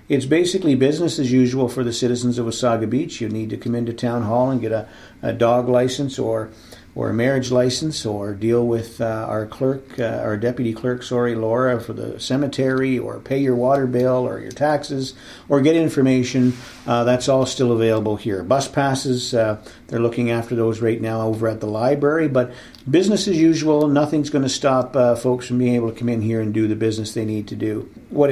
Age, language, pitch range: 50-69, English, 115-130 Hz